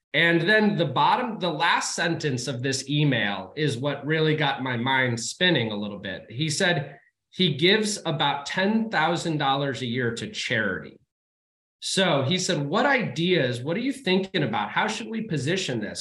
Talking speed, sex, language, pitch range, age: 170 wpm, male, English, 125-185 Hz, 30-49